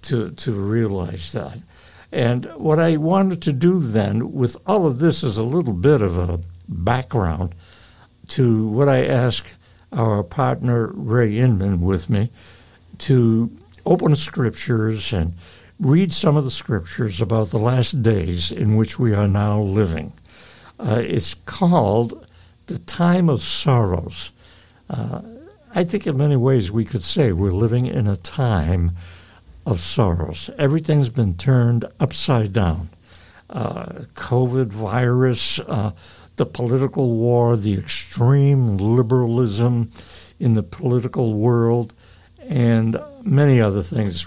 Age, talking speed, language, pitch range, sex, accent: 60-79, 130 wpm, English, 95-130 Hz, male, American